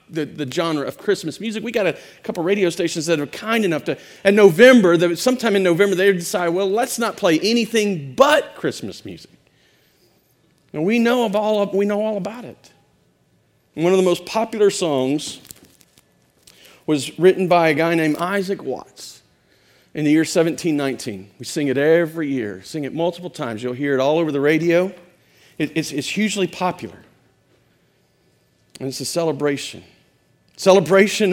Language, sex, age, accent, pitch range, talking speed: English, male, 40-59, American, 150-190 Hz, 170 wpm